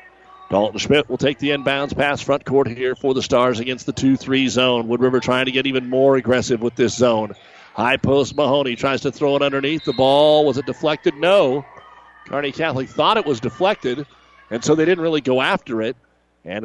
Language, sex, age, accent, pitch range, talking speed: English, male, 50-69, American, 125-145 Hz, 210 wpm